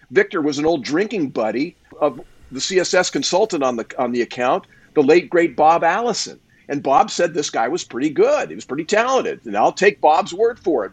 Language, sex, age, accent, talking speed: English, male, 50-69, American, 215 wpm